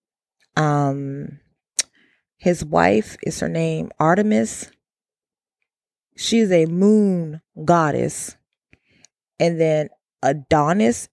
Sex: female